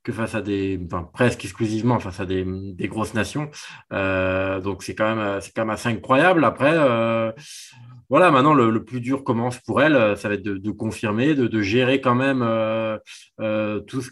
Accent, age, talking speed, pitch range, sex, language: French, 20-39, 210 wpm, 105-125 Hz, male, French